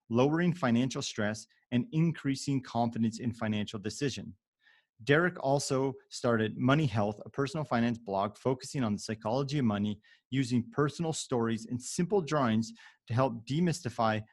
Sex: male